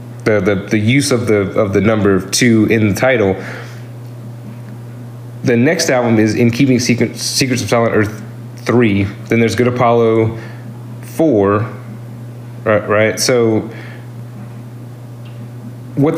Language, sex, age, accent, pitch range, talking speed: English, male, 30-49, American, 110-125 Hz, 125 wpm